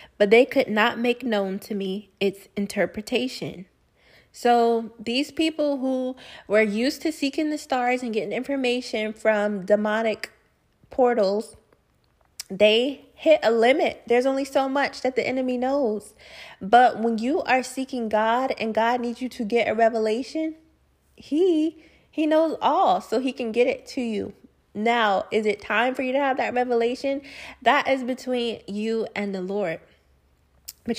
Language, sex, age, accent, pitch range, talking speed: English, female, 20-39, American, 210-250 Hz, 155 wpm